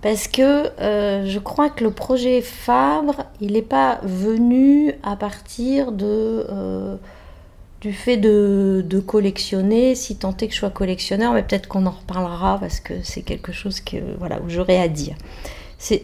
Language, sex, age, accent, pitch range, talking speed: French, female, 40-59, French, 195-260 Hz, 170 wpm